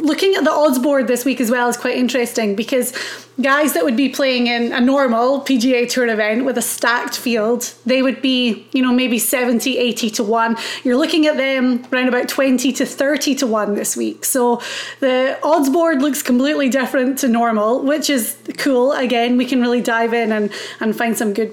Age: 30-49